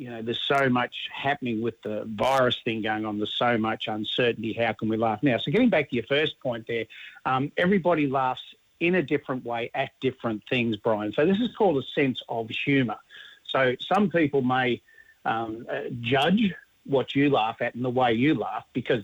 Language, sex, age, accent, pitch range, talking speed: English, male, 50-69, Australian, 120-150 Hz, 205 wpm